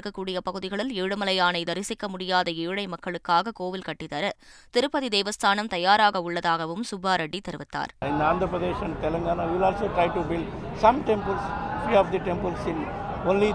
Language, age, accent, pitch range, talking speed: Tamil, 20-39, native, 175-210 Hz, 65 wpm